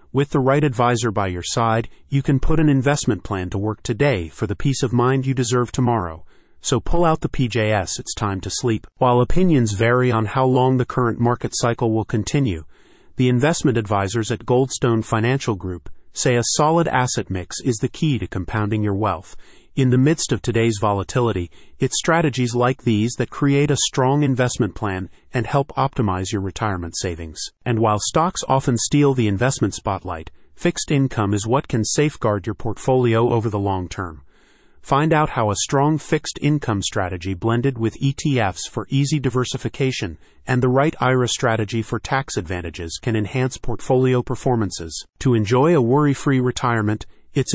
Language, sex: English, male